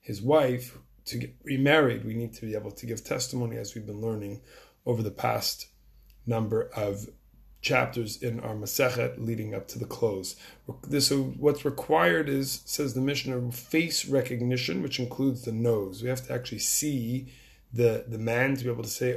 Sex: male